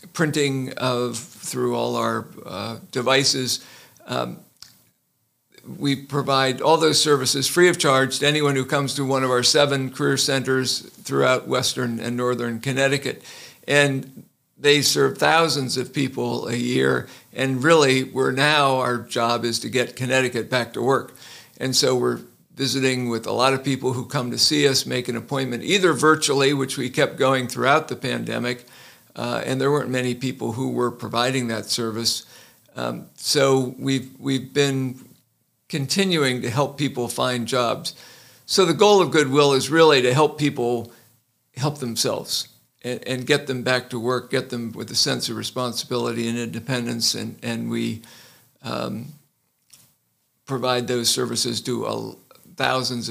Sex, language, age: male, English, 50-69